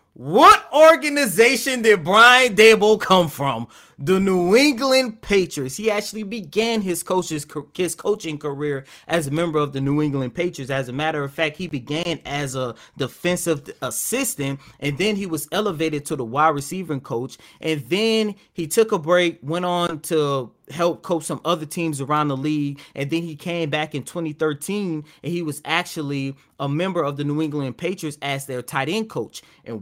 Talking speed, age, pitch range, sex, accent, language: 180 wpm, 30-49, 140-185 Hz, male, American, English